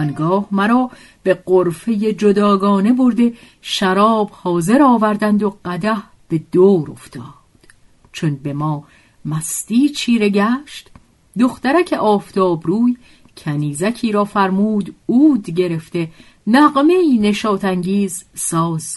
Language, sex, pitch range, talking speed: Persian, female, 160-235 Hz, 100 wpm